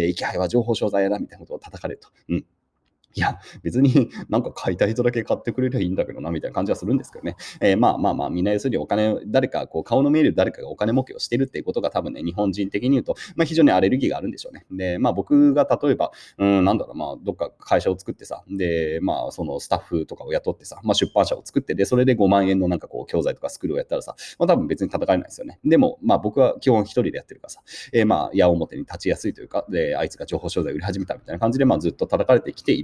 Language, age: Japanese, 30-49